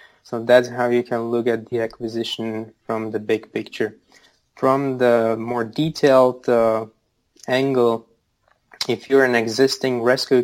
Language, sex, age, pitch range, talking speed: English, male, 20-39, 115-120 Hz, 140 wpm